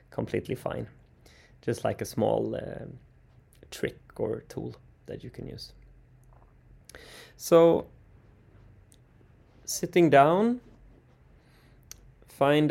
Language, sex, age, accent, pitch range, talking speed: English, male, 20-39, Swedish, 110-125 Hz, 85 wpm